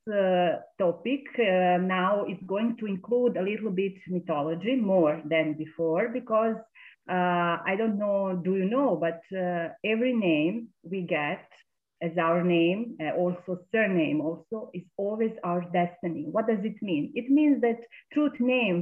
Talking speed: 155 wpm